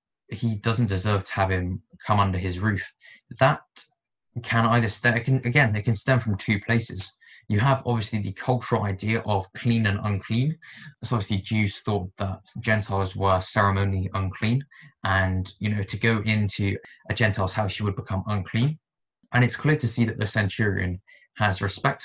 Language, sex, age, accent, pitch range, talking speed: English, male, 20-39, British, 100-120 Hz, 170 wpm